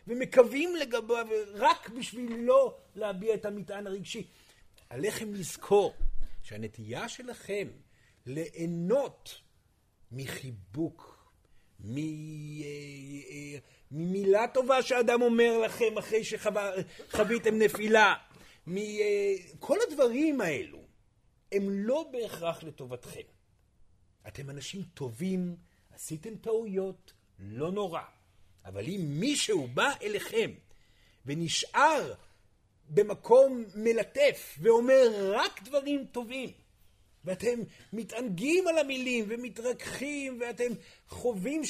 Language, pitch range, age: Hebrew, 155-250 Hz, 50-69